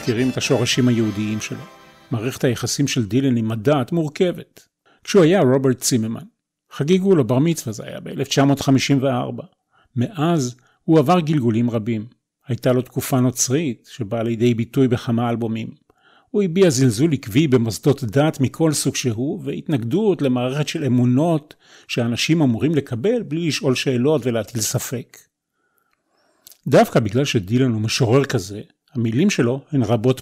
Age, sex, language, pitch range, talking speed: 40-59, male, Hebrew, 120-155 Hz, 135 wpm